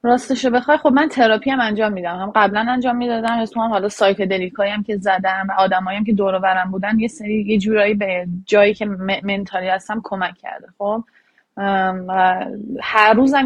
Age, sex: 20-39, female